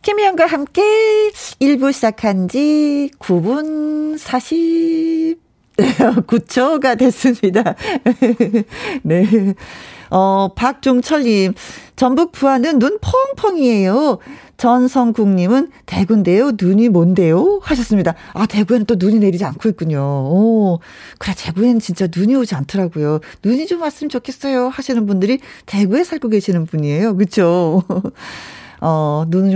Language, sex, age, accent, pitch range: Korean, female, 40-59, native, 185-275 Hz